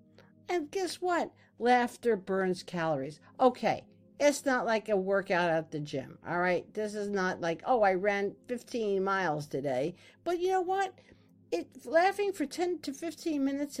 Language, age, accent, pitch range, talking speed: English, 50-69, American, 195-280 Hz, 165 wpm